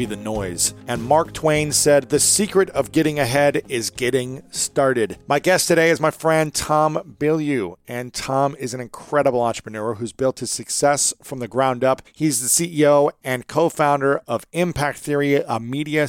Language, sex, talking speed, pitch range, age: English, male, 175 wpm, 125-165 Hz, 40-59